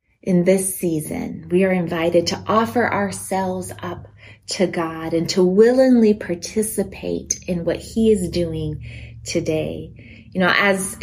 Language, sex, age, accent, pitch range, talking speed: English, female, 20-39, American, 170-205 Hz, 135 wpm